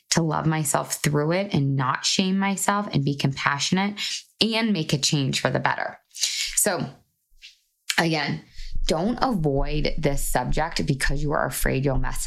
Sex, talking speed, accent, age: female, 150 wpm, American, 20-39